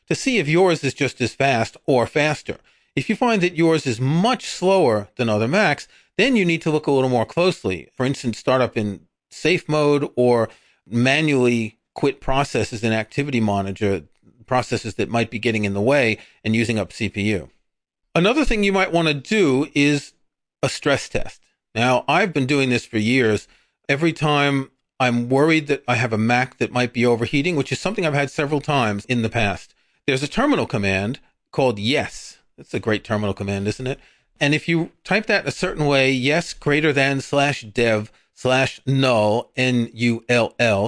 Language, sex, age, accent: English, male, 40-59, American